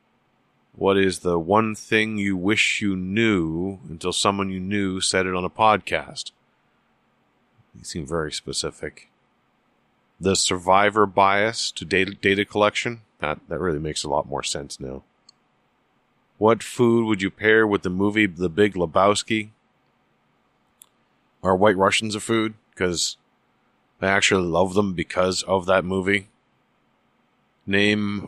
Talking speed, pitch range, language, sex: 135 wpm, 90-105 Hz, English, male